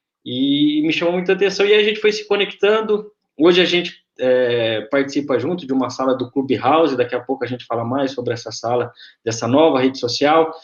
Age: 20-39